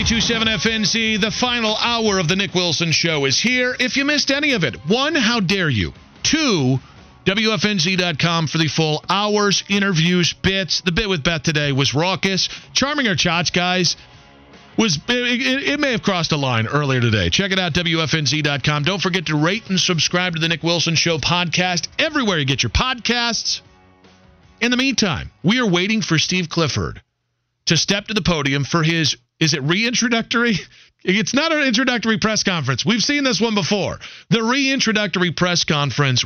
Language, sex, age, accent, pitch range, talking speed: English, male, 40-59, American, 145-205 Hz, 175 wpm